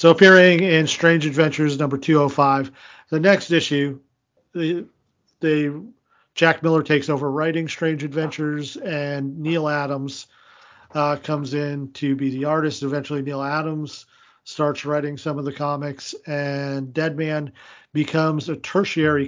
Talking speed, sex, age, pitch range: 135 wpm, male, 40-59, 135-155 Hz